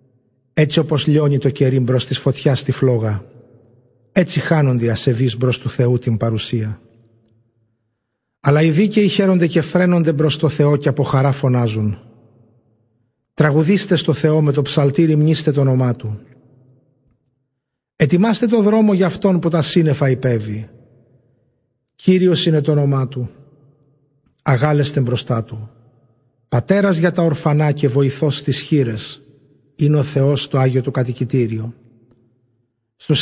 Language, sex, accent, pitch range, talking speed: Greek, male, native, 125-155 Hz, 135 wpm